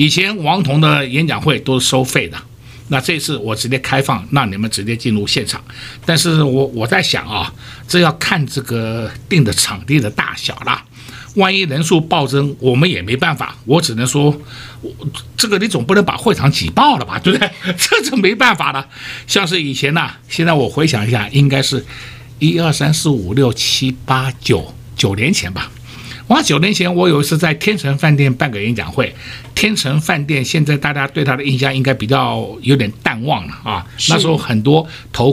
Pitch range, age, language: 125-170 Hz, 60-79, Chinese